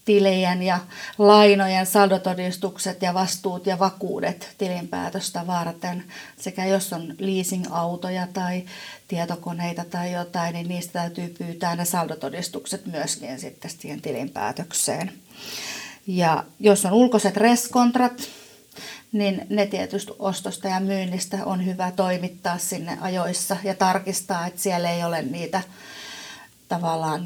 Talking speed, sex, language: 110 wpm, female, Finnish